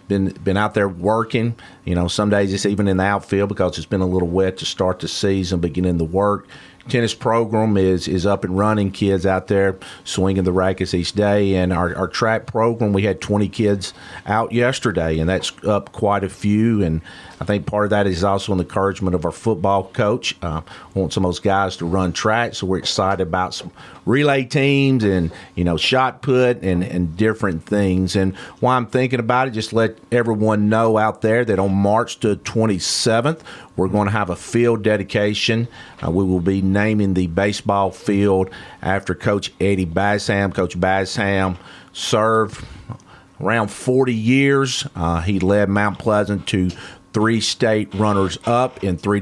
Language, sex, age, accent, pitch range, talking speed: English, male, 40-59, American, 90-110 Hz, 185 wpm